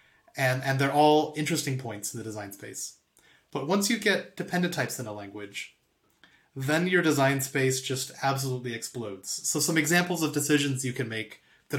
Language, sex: English, male